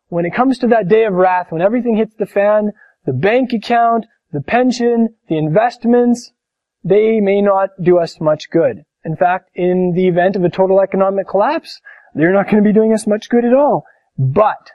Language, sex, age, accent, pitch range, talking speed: English, male, 20-39, American, 170-235 Hz, 200 wpm